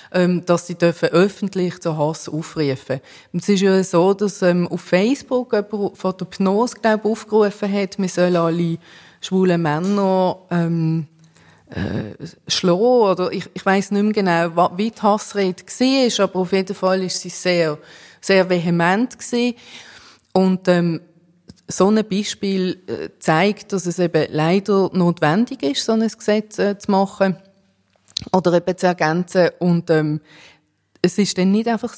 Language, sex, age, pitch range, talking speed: German, female, 30-49, 170-200 Hz, 150 wpm